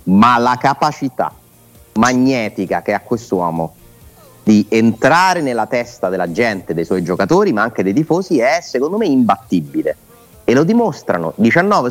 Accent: native